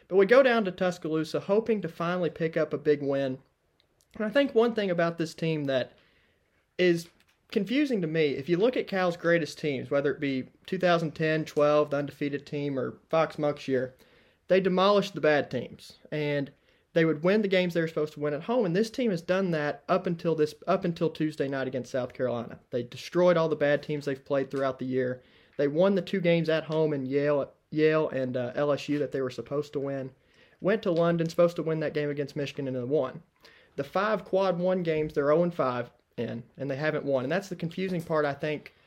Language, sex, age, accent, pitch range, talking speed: English, male, 30-49, American, 140-175 Hz, 220 wpm